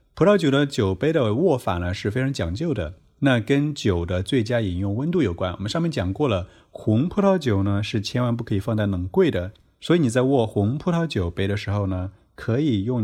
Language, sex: Chinese, male